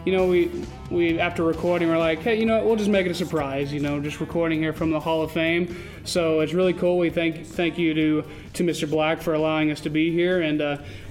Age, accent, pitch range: 30-49, American, 155-180 Hz